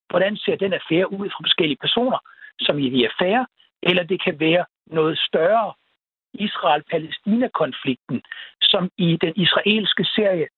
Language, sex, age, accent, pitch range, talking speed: Danish, male, 60-79, native, 165-210 Hz, 135 wpm